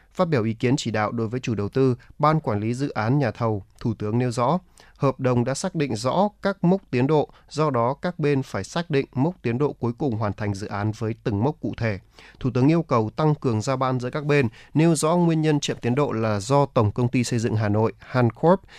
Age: 20-39